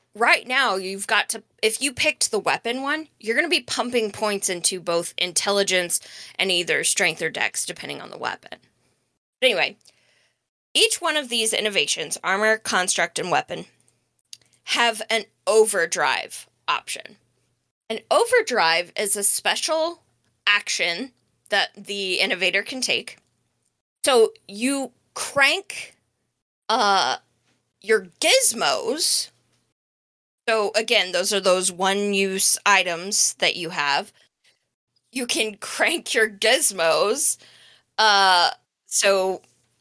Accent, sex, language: American, female, English